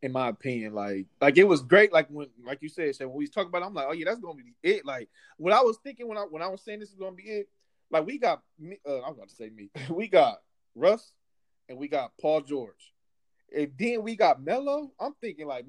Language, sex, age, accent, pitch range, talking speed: English, male, 20-39, American, 115-165 Hz, 255 wpm